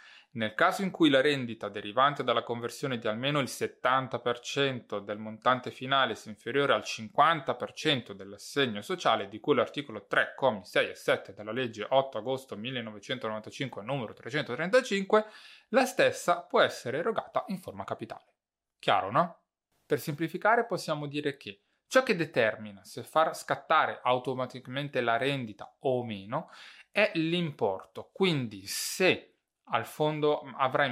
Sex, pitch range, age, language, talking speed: male, 110-150 Hz, 20-39, Italian, 135 wpm